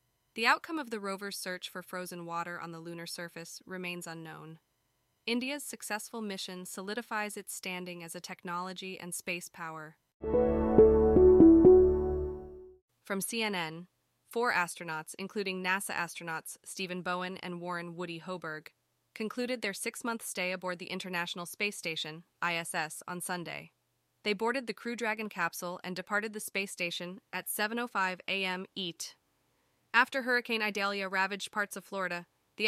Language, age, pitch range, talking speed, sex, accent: English, 20-39, 175-220 Hz, 140 wpm, female, American